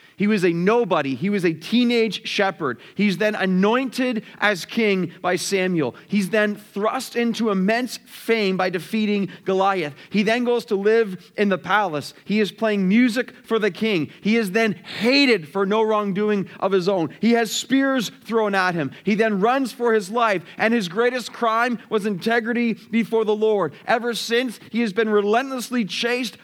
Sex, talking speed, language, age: male, 175 wpm, English, 30-49